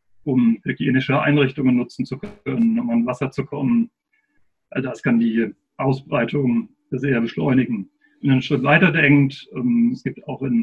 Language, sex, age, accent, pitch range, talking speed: German, male, 40-59, German, 130-160 Hz, 160 wpm